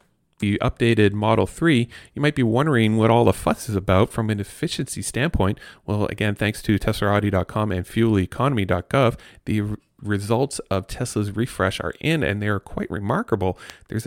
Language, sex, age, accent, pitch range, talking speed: English, male, 40-59, American, 95-120 Hz, 160 wpm